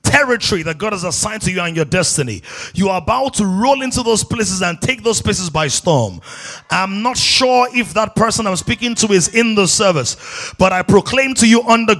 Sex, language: male, English